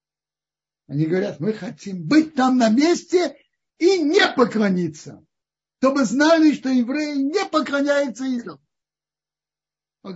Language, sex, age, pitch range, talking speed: Russian, male, 60-79, 145-245 Hz, 110 wpm